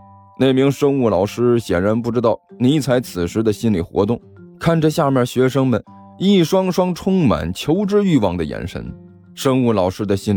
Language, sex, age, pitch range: Chinese, male, 20-39, 100-160 Hz